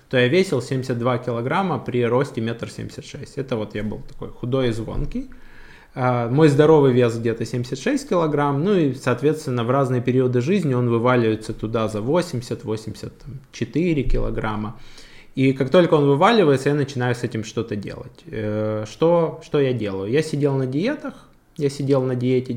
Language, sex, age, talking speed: Russian, male, 20-39, 155 wpm